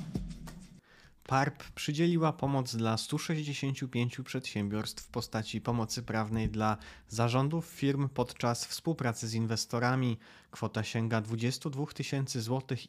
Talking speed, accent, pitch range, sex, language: 100 wpm, native, 115-145 Hz, male, Polish